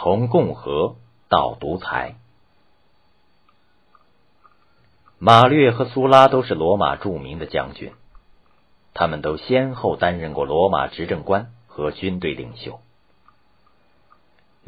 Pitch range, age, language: 75-120 Hz, 50-69, Chinese